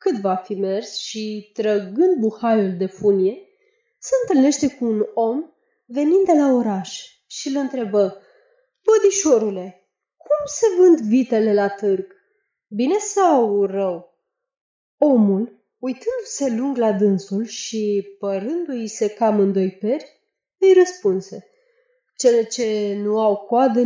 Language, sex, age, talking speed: Romanian, female, 20-39, 125 wpm